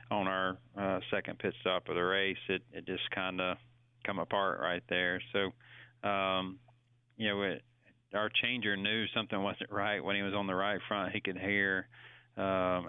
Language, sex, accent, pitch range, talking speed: English, male, American, 95-105 Hz, 185 wpm